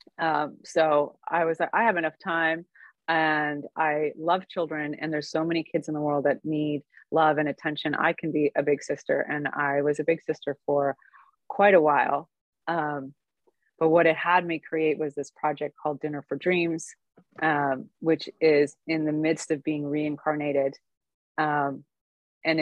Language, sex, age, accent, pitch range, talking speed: English, female, 30-49, American, 150-170 Hz, 180 wpm